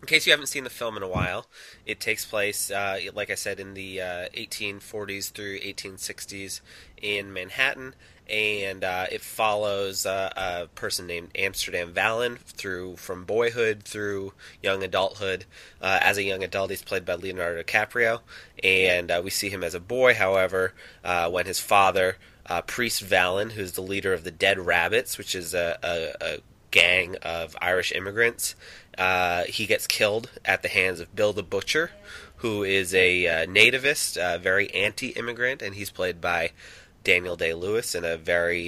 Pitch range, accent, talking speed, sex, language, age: 90-105 Hz, American, 175 wpm, male, English, 20-39